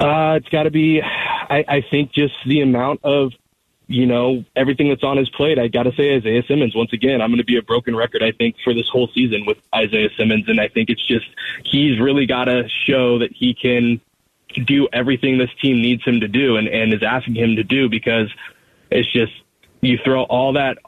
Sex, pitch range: male, 120-135 Hz